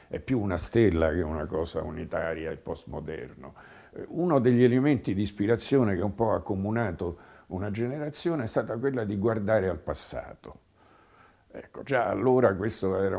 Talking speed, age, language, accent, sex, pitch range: 155 wpm, 50-69, Italian, native, male, 85-115 Hz